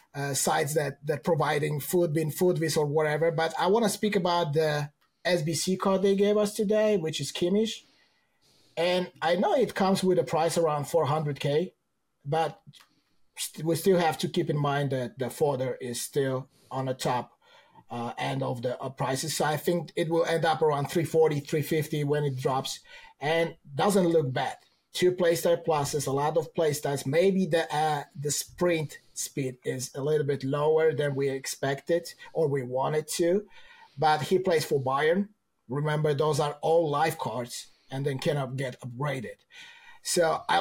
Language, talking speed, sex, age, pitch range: English, 175 wpm, male, 30-49, 145-175 Hz